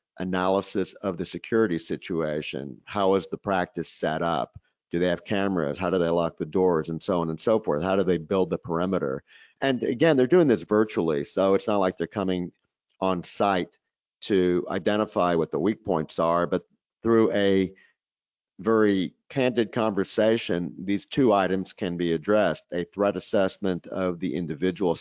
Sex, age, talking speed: male, 50-69, 175 wpm